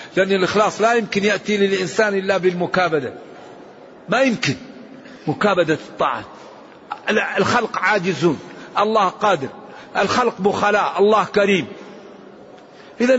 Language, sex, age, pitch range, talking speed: Arabic, male, 50-69, 190-230 Hz, 95 wpm